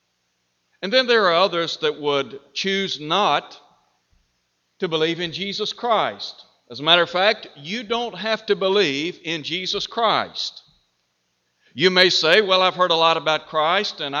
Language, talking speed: English, 160 wpm